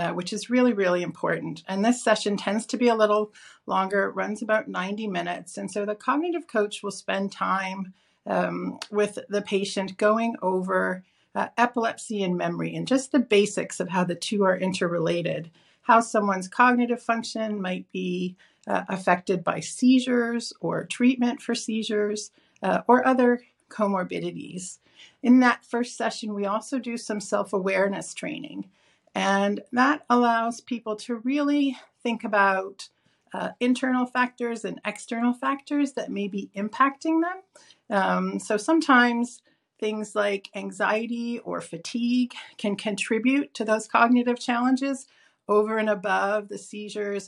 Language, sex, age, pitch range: English, female, 40-59, 195-245 Hz